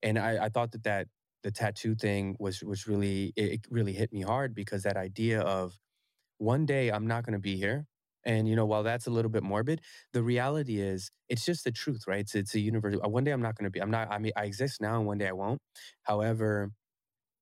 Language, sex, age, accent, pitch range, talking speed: English, male, 20-39, American, 100-120 Hz, 245 wpm